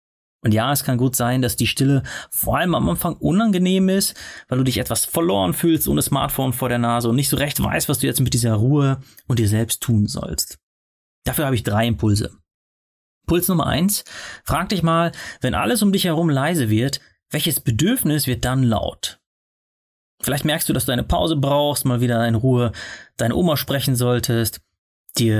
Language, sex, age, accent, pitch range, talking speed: German, male, 30-49, German, 110-145 Hz, 195 wpm